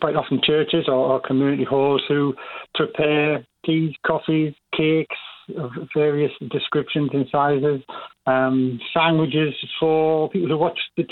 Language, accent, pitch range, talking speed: English, British, 140-165 Hz, 135 wpm